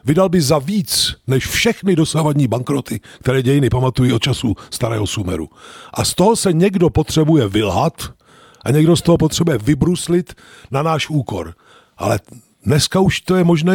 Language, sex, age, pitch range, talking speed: Czech, male, 50-69, 130-170 Hz, 160 wpm